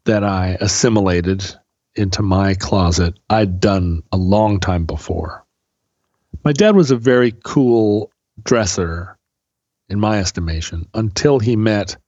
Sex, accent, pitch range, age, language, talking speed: male, American, 95-115 Hz, 40-59, English, 125 wpm